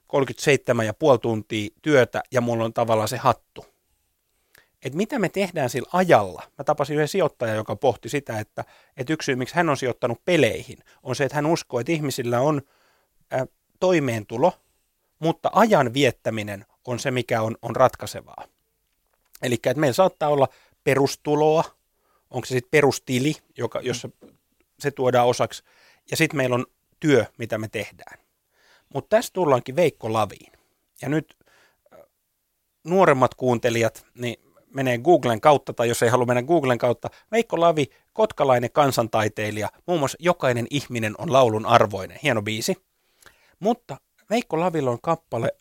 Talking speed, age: 145 wpm, 30-49